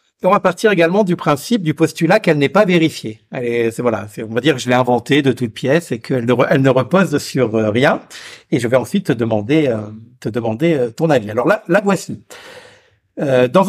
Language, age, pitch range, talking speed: French, 60-79, 125-175 Hz, 230 wpm